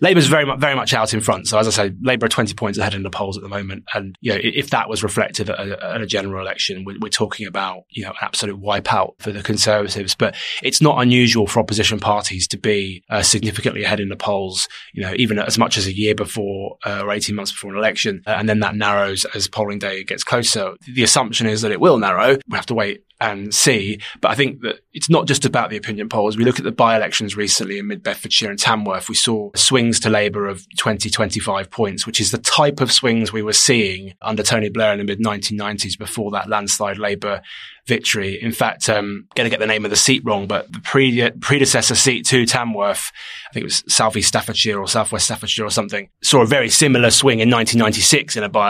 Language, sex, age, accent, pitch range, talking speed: English, male, 20-39, British, 100-115 Hz, 250 wpm